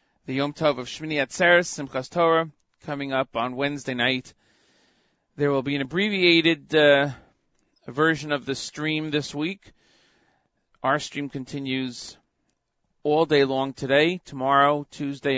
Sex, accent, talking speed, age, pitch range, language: male, American, 135 wpm, 40-59, 115-150 Hz, English